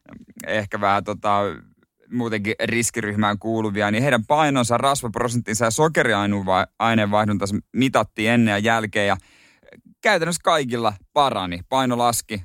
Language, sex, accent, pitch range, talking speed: Finnish, male, native, 100-120 Hz, 110 wpm